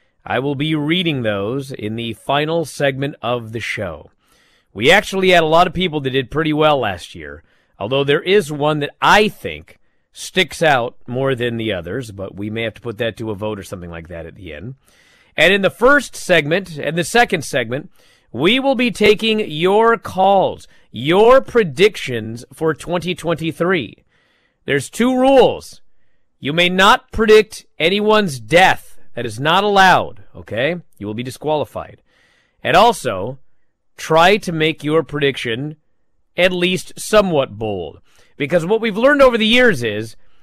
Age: 40-59